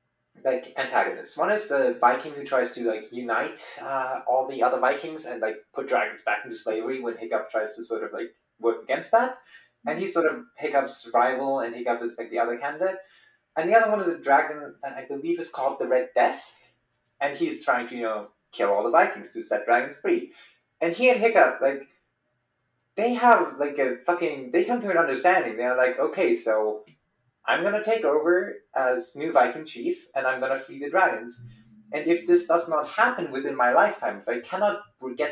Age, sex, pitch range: 20-39, male, 125-205 Hz